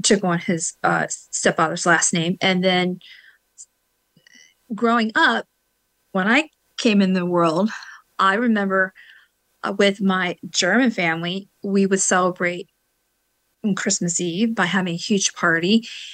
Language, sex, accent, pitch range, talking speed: English, female, American, 180-210 Hz, 130 wpm